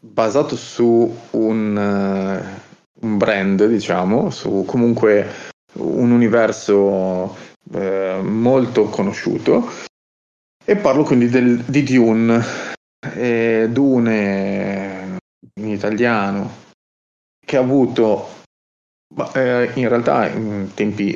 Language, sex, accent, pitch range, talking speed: Italian, male, native, 100-120 Hz, 90 wpm